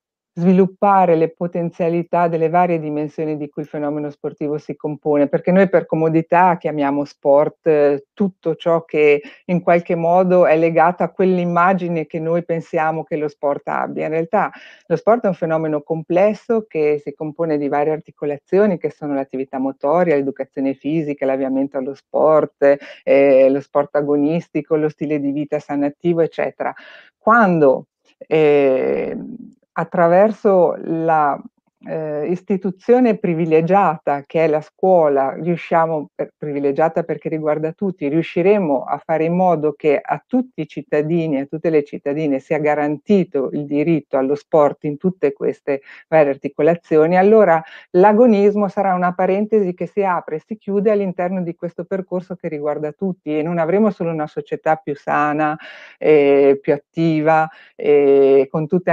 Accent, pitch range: native, 150-180 Hz